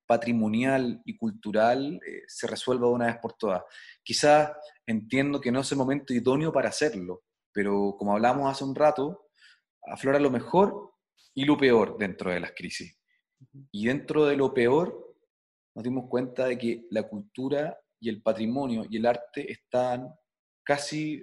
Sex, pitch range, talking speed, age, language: male, 105-135 Hz, 160 wpm, 30-49, Spanish